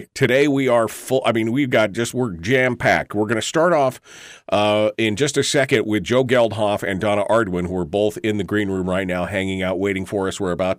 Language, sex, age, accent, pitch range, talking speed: English, male, 40-59, American, 90-115 Hz, 240 wpm